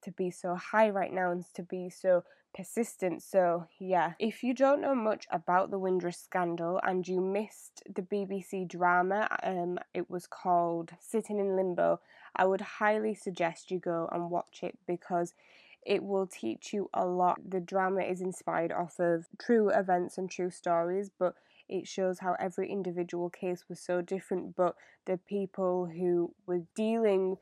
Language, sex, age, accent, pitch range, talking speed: English, female, 10-29, British, 175-195 Hz, 170 wpm